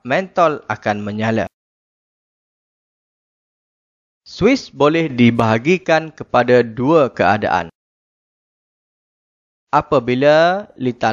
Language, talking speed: Malay, 60 wpm